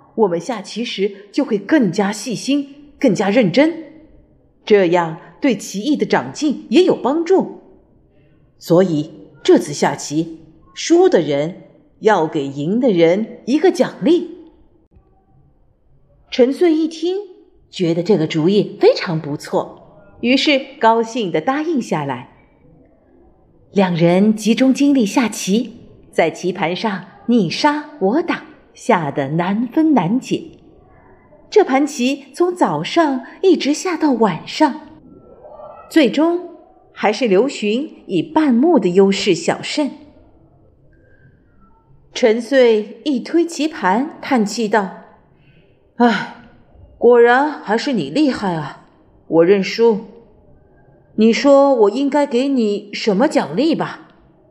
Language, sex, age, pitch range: Chinese, female, 50-69, 195-295 Hz